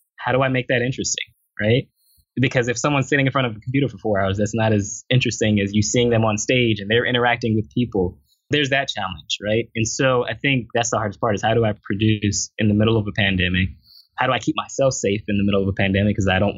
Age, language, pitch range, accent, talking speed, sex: 20-39, English, 100-120 Hz, American, 260 wpm, male